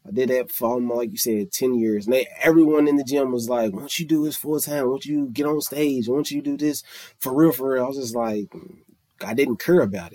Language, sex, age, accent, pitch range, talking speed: English, male, 20-39, American, 120-150 Hz, 280 wpm